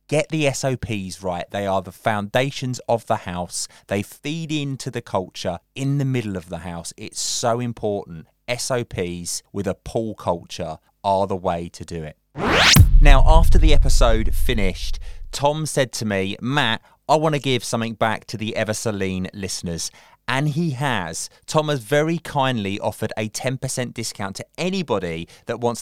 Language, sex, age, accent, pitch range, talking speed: English, male, 20-39, British, 95-130 Hz, 165 wpm